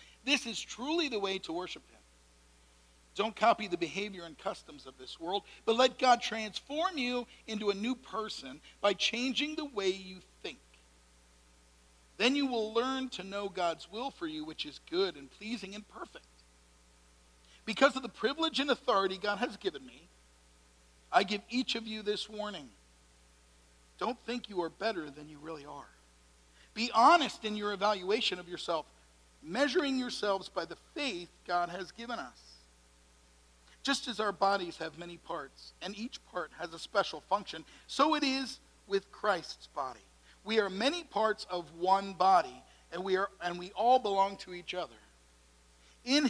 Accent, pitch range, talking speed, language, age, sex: American, 155-245 Hz, 165 wpm, English, 50-69, male